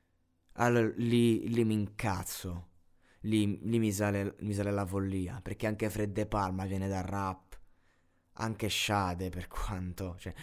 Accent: native